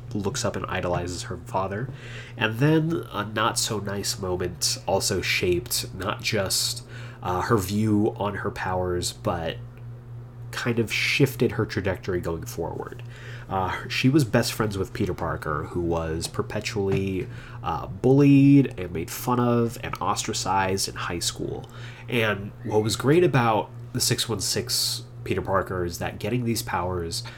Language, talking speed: English, 145 wpm